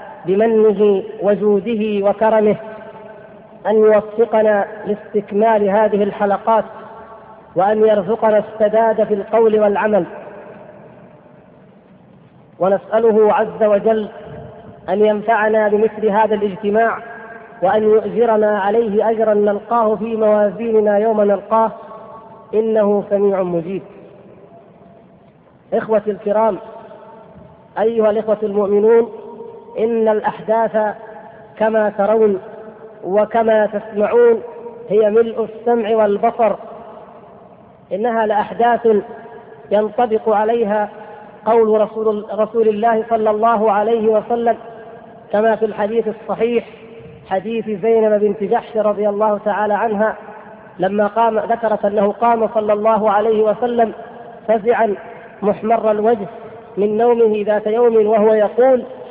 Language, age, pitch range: Arabic, 40-59, 210-225 Hz